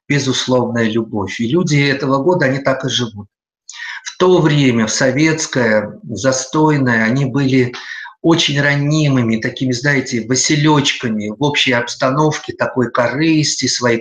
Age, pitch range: 50-69, 125-150 Hz